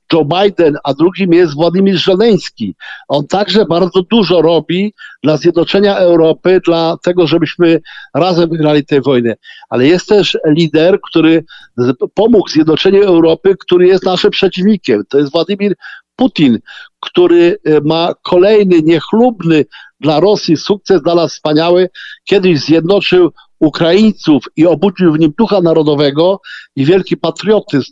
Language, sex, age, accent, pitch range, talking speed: Polish, male, 50-69, native, 160-195 Hz, 130 wpm